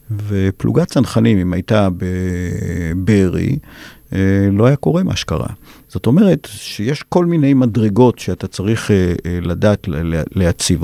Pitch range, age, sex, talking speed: 90-110 Hz, 50-69, male, 115 wpm